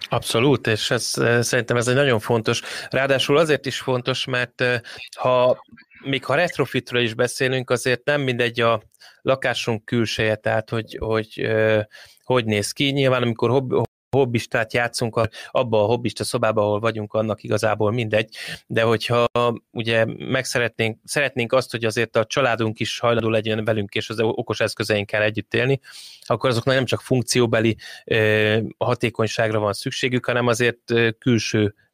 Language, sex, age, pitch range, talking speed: Hungarian, male, 20-39, 110-125 Hz, 145 wpm